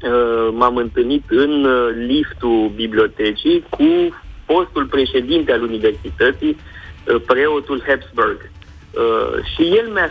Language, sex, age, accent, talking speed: Romanian, male, 30-49, native, 90 wpm